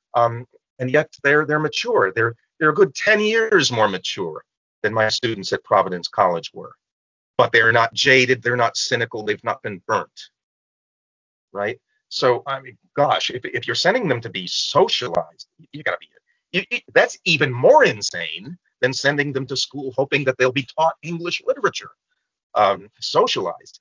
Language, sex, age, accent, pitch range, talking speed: English, male, 40-59, American, 120-190 Hz, 170 wpm